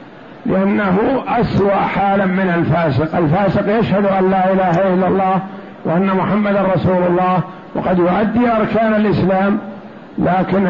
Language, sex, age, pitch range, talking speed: Arabic, male, 60-79, 170-200 Hz, 125 wpm